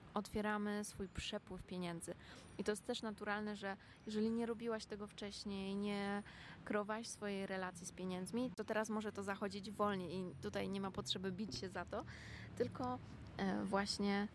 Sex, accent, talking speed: female, native, 160 wpm